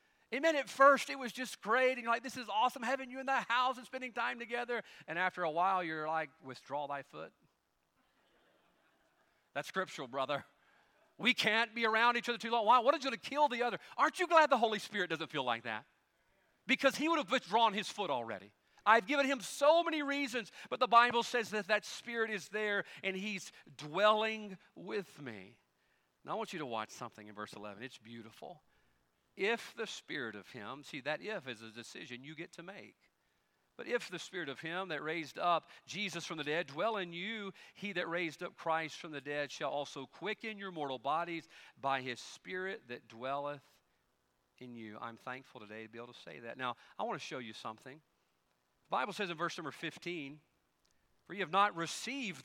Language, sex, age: English, male, 40-59